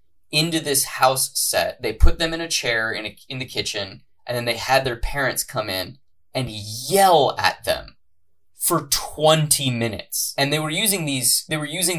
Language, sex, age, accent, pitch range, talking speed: English, male, 20-39, American, 110-150 Hz, 190 wpm